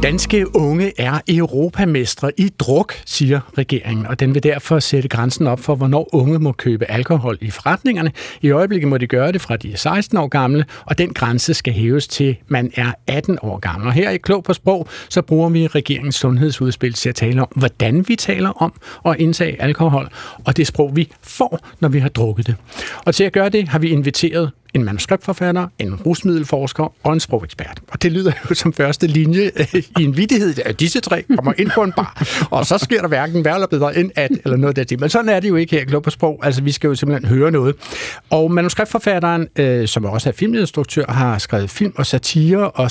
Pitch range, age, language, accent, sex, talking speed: 130-175 Hz, 60-79, Danish, native, male, 215 wpm